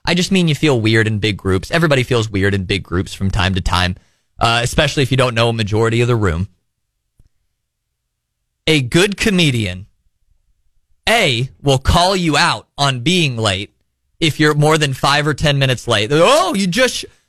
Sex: male